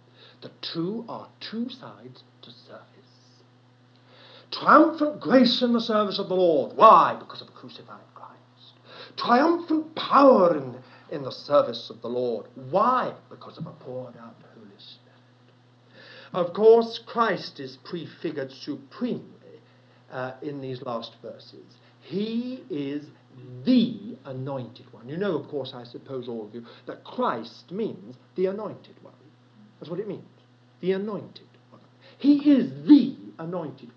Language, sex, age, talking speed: English, male, 60-79, 140 wpm